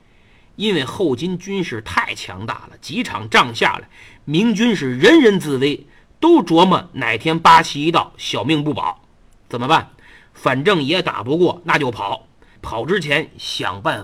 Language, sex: Chinese, male